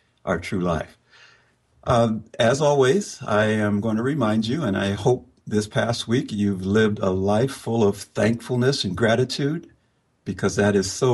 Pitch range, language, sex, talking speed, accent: 100-135 Hz, English, male, 165 wpm, American